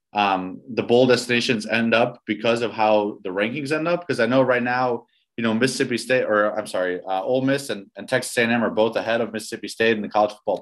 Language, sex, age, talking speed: English, male, 20-39, 235 wpm